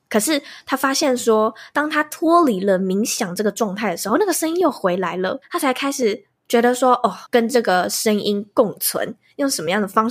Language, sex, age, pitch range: Chinese, female, 10-29, 195-265 Hz